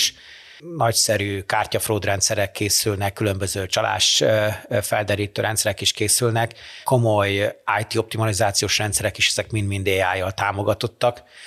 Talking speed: 105 wpm